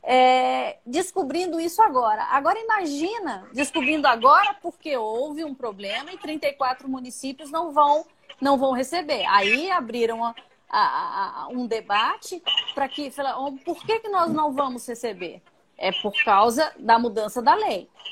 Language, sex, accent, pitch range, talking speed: Portuguese, female, Brazilian, 245-335 Hz, 150 wpm